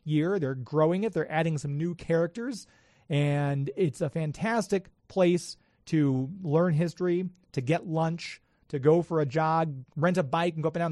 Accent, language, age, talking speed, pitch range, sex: American, English, 30-49, 180 wpm, 150-185 Hz, male